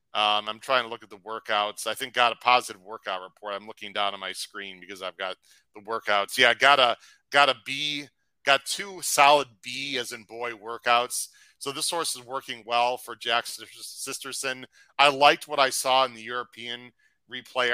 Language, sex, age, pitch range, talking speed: English, male, 40-59, 120-145 Hz, 200 wpm